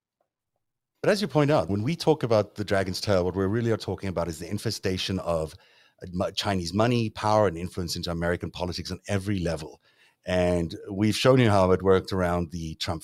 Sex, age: male, 30-49